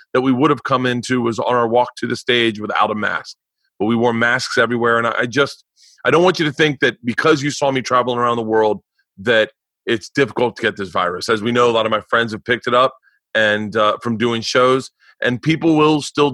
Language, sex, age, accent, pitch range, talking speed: English, male, 30-49, American, 120-145 Hz, 240 wpm